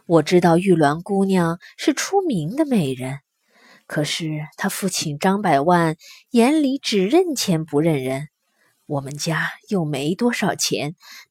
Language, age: Chinese, 20-39